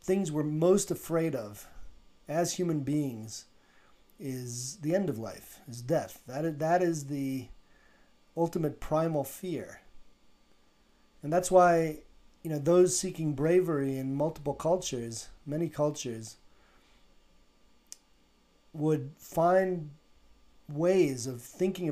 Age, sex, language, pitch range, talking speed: 40-59, male, English, 125-165 Hz, 110 wpm